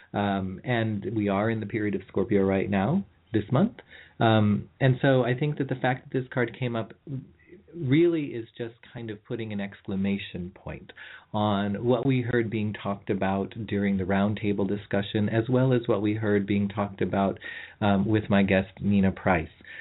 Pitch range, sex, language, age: 100-115 Hz, male, English, 40-59